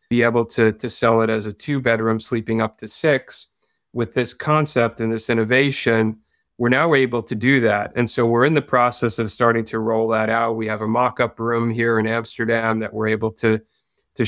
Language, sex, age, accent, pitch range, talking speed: English, male, 40-59, American, 110-120 Hz, 220 wpm